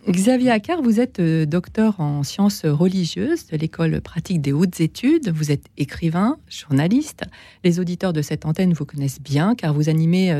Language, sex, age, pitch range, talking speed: French, female, 40-59, 160-200 Hz, 165 wpm